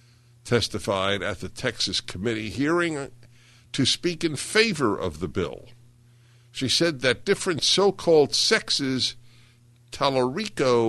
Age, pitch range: 60-79, 110-120 Hz